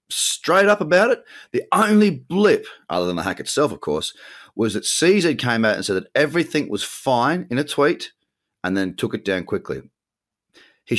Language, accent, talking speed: English, Australian, 190 wpm